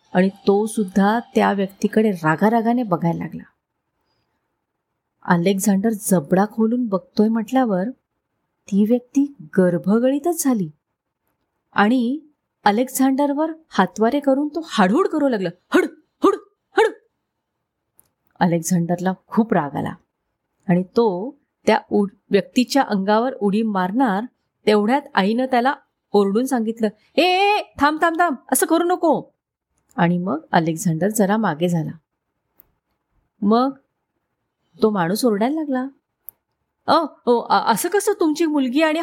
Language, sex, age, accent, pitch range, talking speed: Marathi, female, 30-49, native, 200-290 Hz, 95 wpm